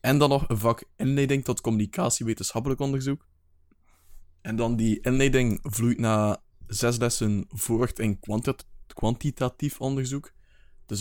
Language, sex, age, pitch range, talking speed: Dutch, male, 20-39, 105-125 Hz, 125 wpm